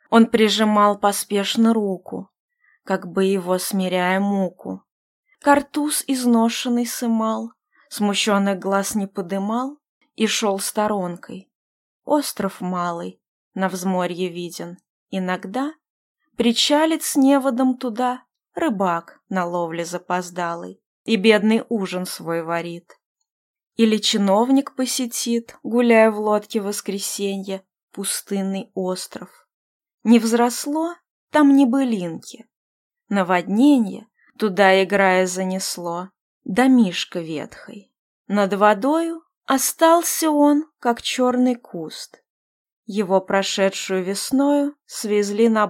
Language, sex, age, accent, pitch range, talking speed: Russian, female, 20-39, native, 190-255 Hz, 90 wpm